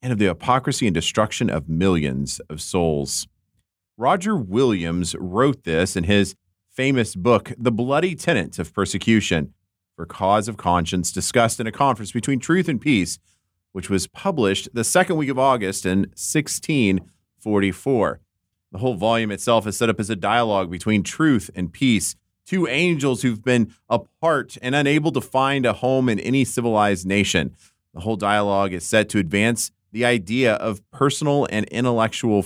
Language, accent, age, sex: English, American, 30-49, male